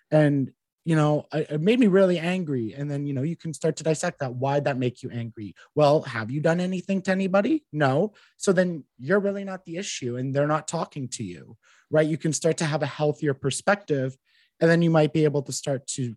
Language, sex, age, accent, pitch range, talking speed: English, male, 30-49, American, 125-150 Hz, 230 wpm